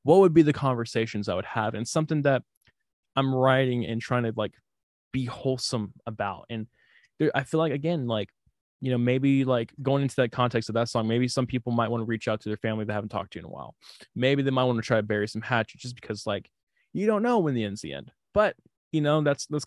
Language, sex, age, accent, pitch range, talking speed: English, male, 20-39, American, 115-140 Hz, 255 wpm